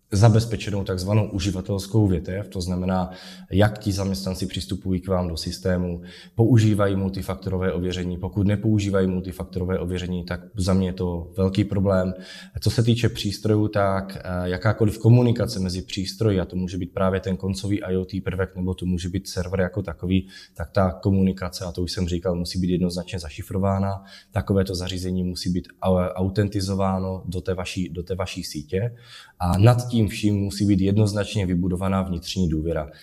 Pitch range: 90-100 Hz